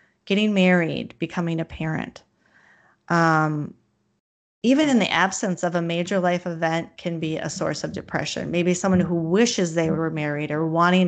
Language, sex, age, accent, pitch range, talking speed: English, female, 30-49, American, 165-195 Hz, 160 wpm